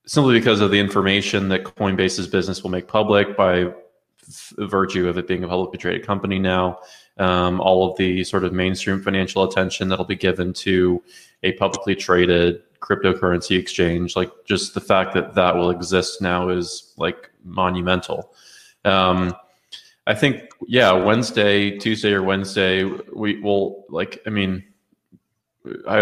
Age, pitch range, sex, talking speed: 20-39, 90-100 Hz, male, 150 wpm